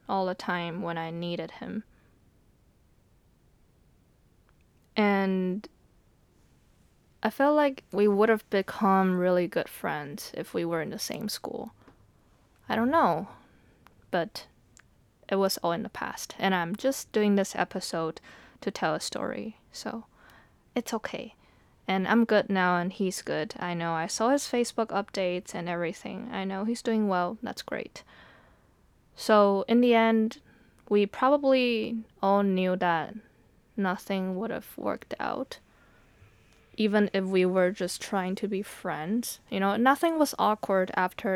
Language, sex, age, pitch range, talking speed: English, female, 20-39, 185-225 Hz, 145 wpm